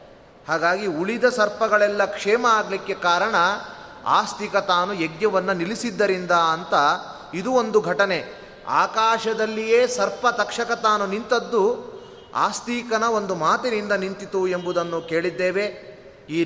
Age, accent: 30-49, native